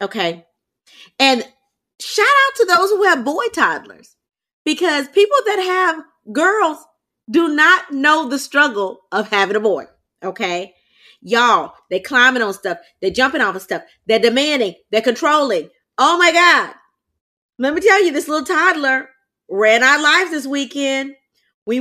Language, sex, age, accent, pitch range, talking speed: English, female, 30-49, American, 225-310 Hz, 150 wpm